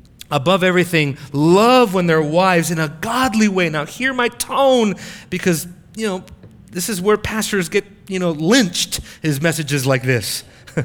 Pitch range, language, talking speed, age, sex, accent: 140-210 Hz, English, 160 wpm, 30-49, male, American